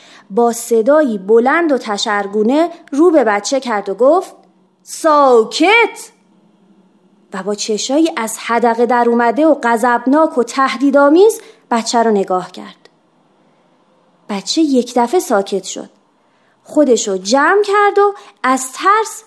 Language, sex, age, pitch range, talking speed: Persian, female, 30-49, 215-315 Hz, 120 wpm